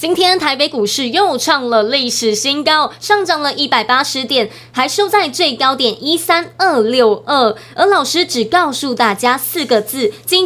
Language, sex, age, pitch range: Chinese, female, 20-39, 240-350 Hz